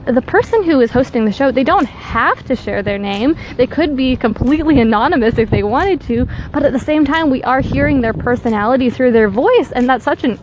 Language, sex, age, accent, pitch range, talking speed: English, female, 20-39, American, 230-280 Hz, 230 wpm